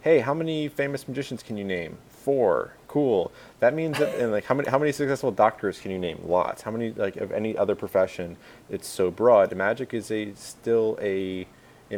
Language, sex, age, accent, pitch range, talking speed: English, male, 30-49, American, 95-110 Hz, 205 wpm